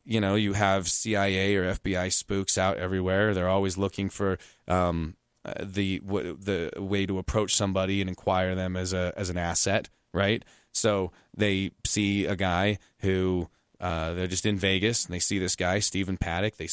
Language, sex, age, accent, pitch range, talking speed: English, male, 30-49, American, 95-110 Hz, 180 wpm